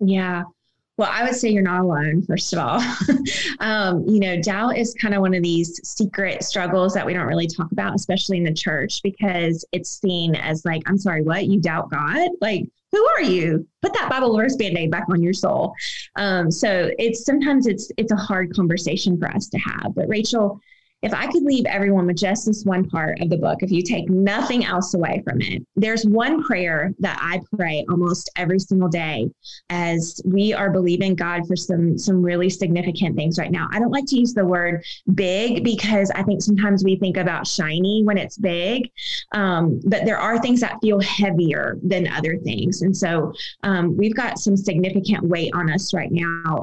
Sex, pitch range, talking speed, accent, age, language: female, 175-210 Hz, 205 wpm, American, 20-39, English